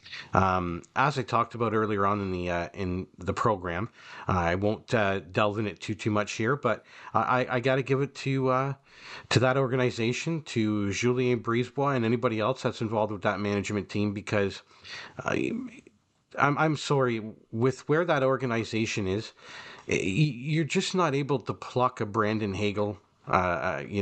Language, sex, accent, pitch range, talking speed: English, male, American, 105-135 Hz, 170 wpm